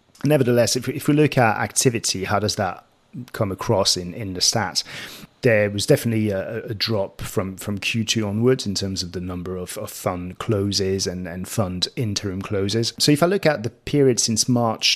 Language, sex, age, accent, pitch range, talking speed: English, male, 30-49, British, 95-115 Hz, 195 wpm